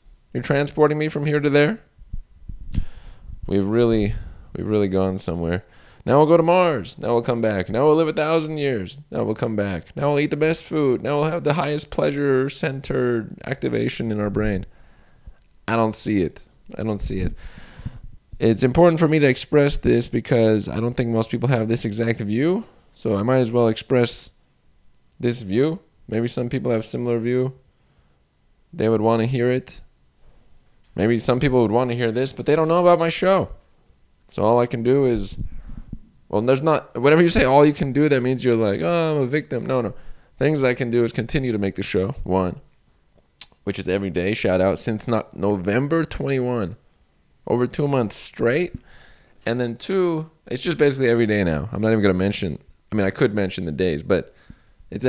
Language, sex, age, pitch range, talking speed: English, male, 20-39, 100-145 Hz, 200 wpm